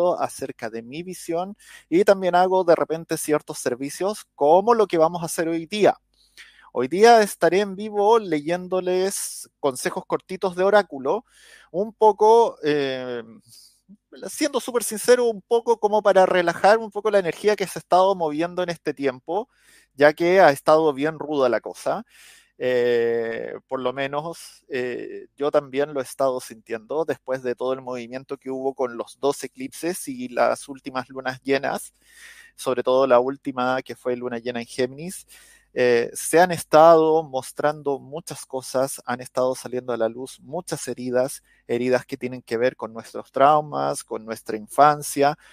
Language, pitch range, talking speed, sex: Spanish, 130-185 Hz, 160 wpm, male